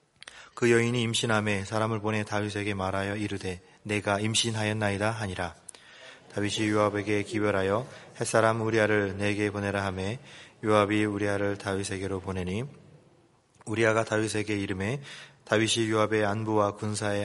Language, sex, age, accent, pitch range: Korean, male, 20-39, native, 100-110 Hz